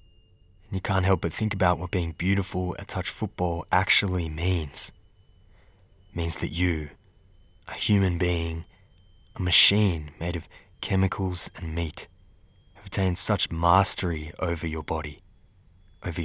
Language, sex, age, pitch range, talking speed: English, male, 20-39, 85-100 Hz, 135 wpm